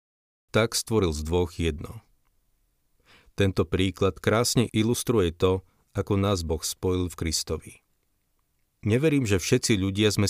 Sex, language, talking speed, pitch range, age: male, Slovak, 120 wpm, 90-100 Hz, 40-59